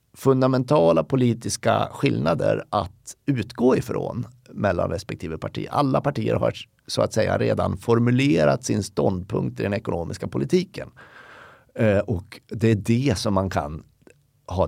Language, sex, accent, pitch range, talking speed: Swedish, male, native, 105-135 Hz, 125 wpm